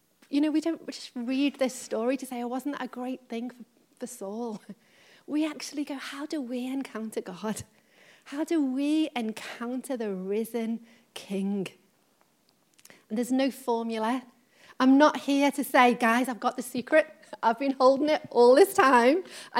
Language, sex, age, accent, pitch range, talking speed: English, female, 30-49, British, 230-280 Hz, 170 wpm